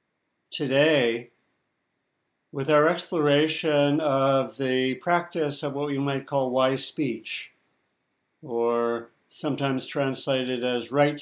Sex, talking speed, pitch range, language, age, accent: male, 100 wpm, 130-150 Hz, English, 60-79, American